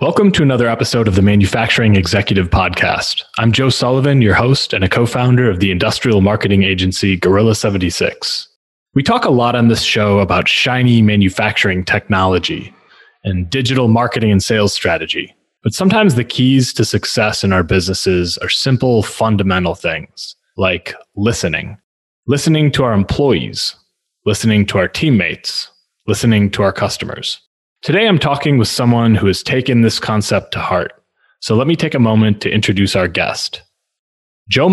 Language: English